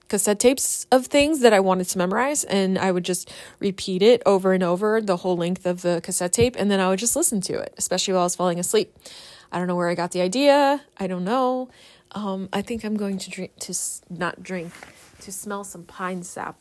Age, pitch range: 30-49, 180-245 Hz